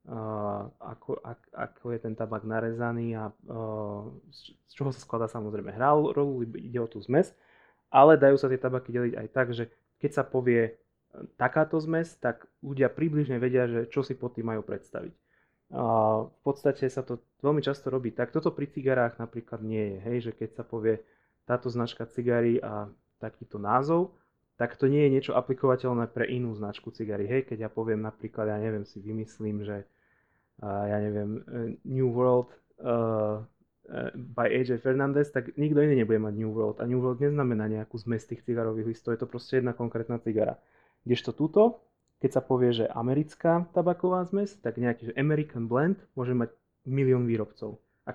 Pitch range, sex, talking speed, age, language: 115-135 Hz, male, 175 wpm, 20-39, Slovak